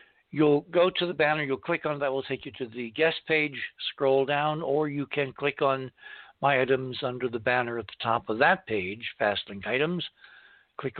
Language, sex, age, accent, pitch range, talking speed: English, male, 60-79, American, 125-160 Hz, 205 wpm